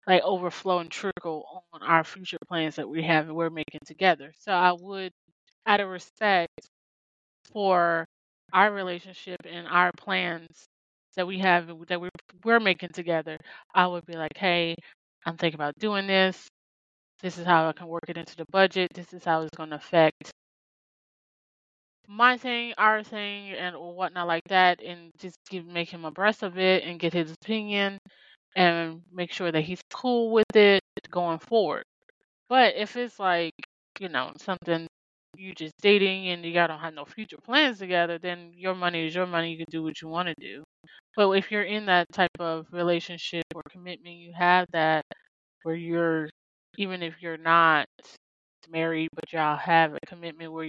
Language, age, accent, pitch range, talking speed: English, 20-39, American, 165-195 Hz, 175 wpm